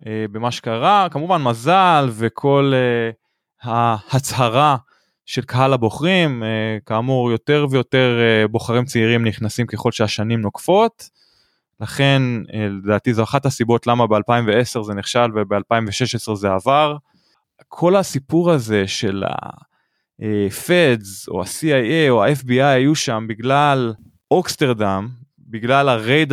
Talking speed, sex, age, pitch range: 115 wpm, male, 20-39, 110-140 Hz